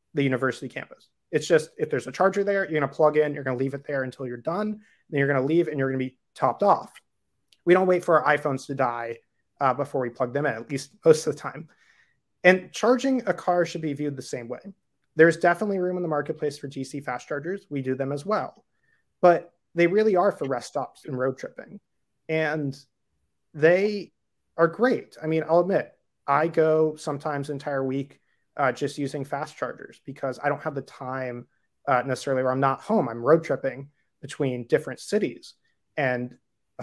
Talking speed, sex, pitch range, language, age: 205 wpm, male, 135-180 Hz, English, 30-49